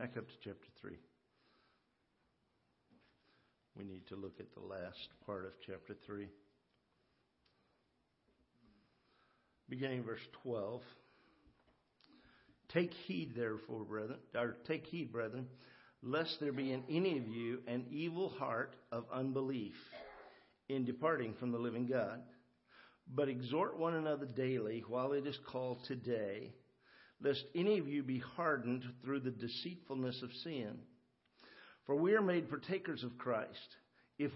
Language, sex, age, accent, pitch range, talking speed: English, male, 50-69, American, 125-160 Hz, 130 wpm